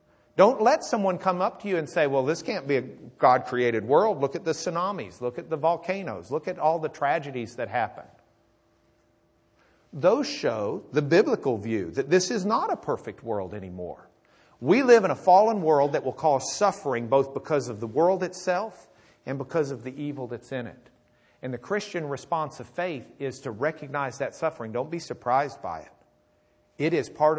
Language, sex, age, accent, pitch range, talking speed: English, male, 50-69, American, 120-155 Hz, 190 wpm